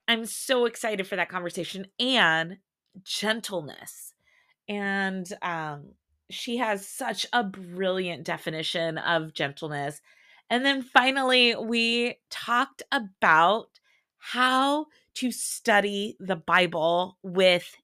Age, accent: 30-49, American